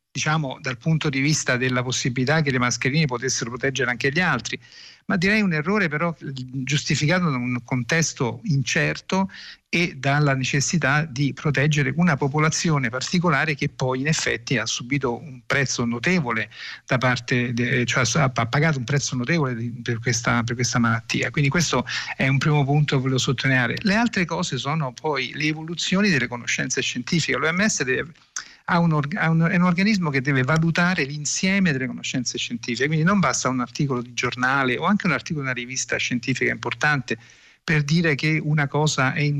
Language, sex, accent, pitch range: Italian, male, native, 125-160 Hz